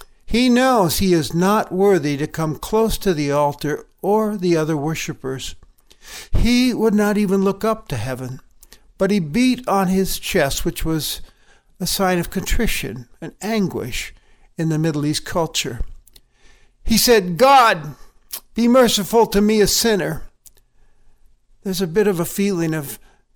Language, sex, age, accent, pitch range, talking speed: English, male, 60-79, American, 145-205 Hz, 150 wpm